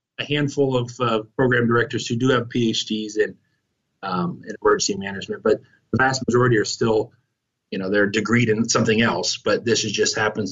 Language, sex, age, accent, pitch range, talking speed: English, male, 30-49, American, 110-135 Hz, 175 wpm